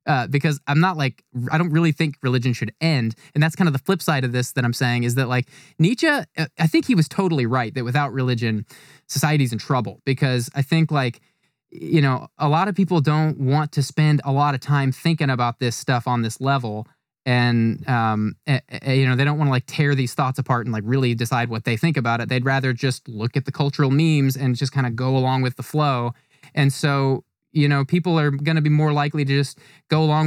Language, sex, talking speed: English, male, 235 wpm